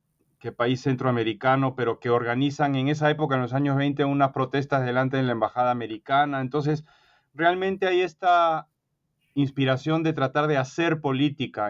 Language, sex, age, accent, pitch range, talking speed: Spanish, male, 30-49, Mexican, 130-155 Hz, 155 wpm